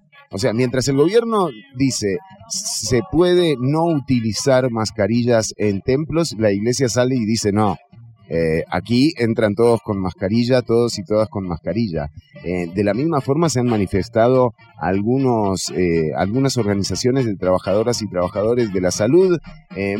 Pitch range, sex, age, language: 95-135 Hz, male, 30-49, English